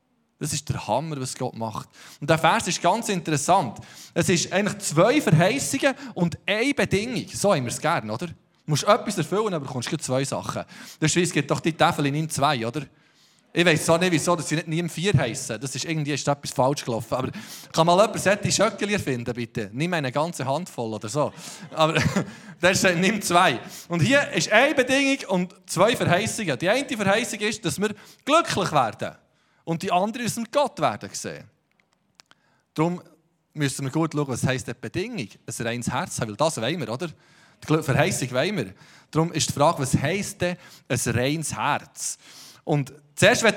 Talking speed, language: 190 wpm, German